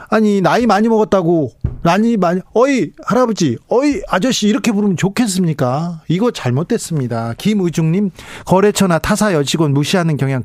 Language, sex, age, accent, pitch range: Korean, male, 40-59, native, 145-215 Hz